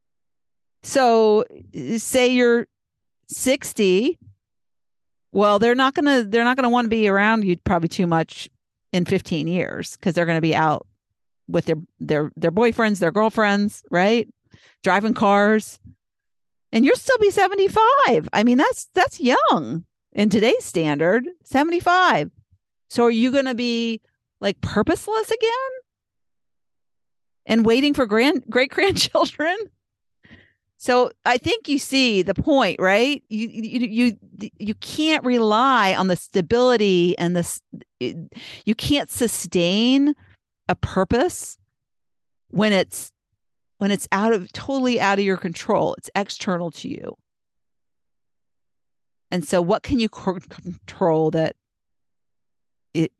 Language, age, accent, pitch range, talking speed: English, 50-69, American, 180-255 Hz, 125 wpm